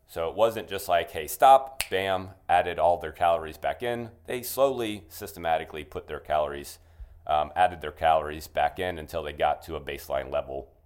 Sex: male